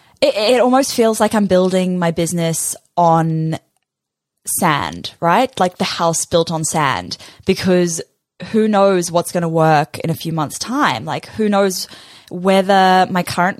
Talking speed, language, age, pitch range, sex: 155 wpm, English, 10-29, 165-215 Hz, female